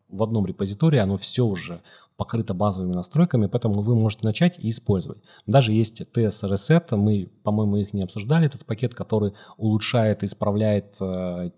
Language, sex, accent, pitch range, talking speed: Russian, male, native, 95-115 Hz, 155 wpm